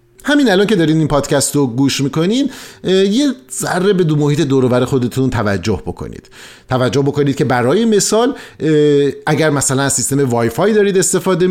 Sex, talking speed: male, 155 wpm